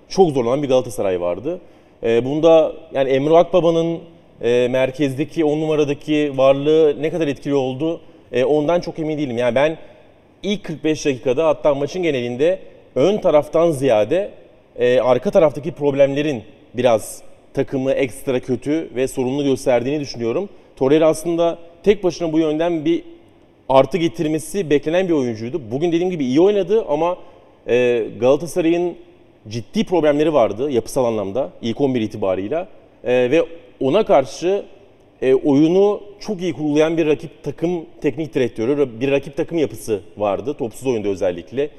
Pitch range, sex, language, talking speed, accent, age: 135-170 Hz, male, Turkish, 130 wpm, native, 40-59